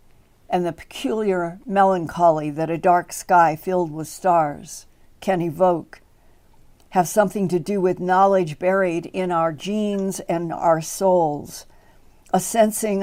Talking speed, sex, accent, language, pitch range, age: 130 wpm, female, American, English, 170-200 Hz, 60-79